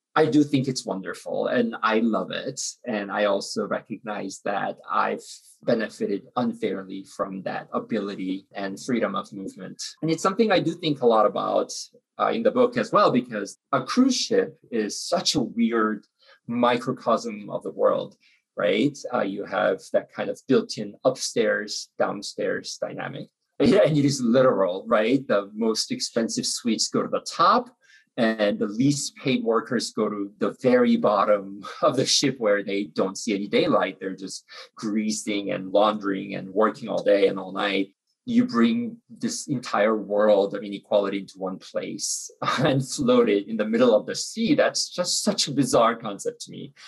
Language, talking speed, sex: English, 170 wpm, male